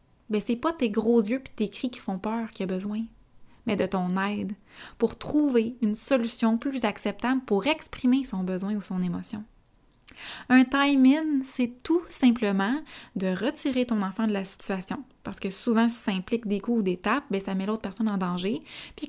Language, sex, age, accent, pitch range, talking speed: French, female, 20-39, Canadian, 205-255 Hz, 200 wpm